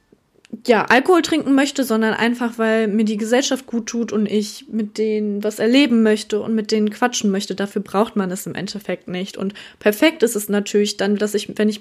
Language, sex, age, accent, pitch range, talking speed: German, female, 20-39, German, 205-240 Hz, 210 wpm